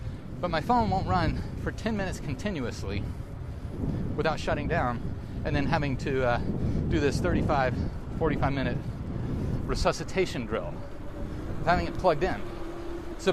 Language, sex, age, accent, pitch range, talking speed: English, male, 40-59, American, 120-185 Hz, 130 wpm